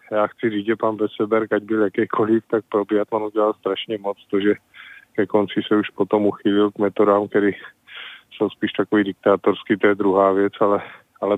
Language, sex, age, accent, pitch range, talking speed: Czech, male, 20-39, native, 95-105 Hz, 190 wpm